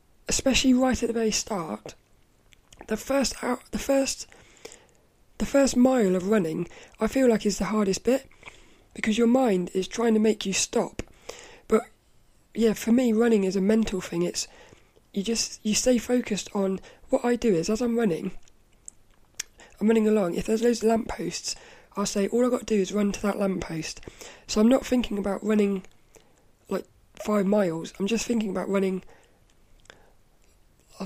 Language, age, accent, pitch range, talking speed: English, 20-39, British, 195-235 Hz, 170 wpm